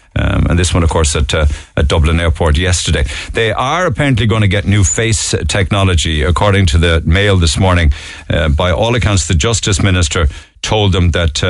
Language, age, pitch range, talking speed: English, 50-69, 85-110 Hz, 195 wpm